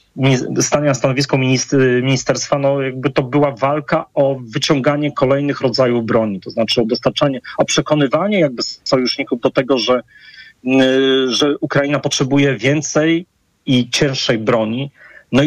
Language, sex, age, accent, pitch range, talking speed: Polish, male, 40-59, native, 125-145 Hz, 125 wpm